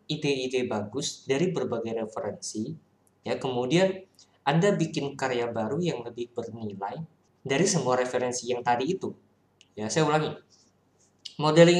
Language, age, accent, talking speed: Indonesian, 20-39, native, 120 wpm